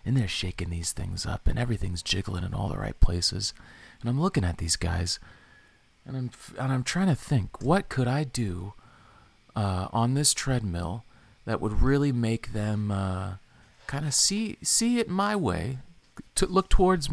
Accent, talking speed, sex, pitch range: American, 180 wpm, male, 95-135 Hz